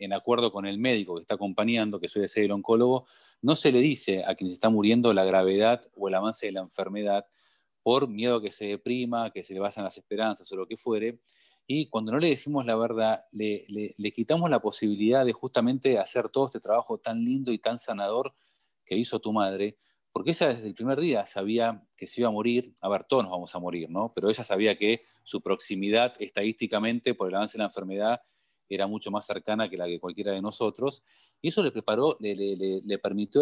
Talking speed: 225 wpm